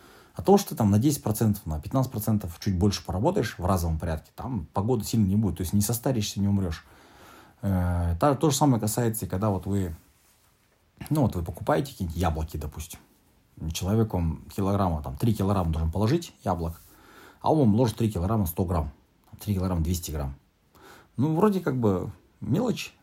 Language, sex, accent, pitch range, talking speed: Russian, male, native, 85-115 Hz, 175 wpm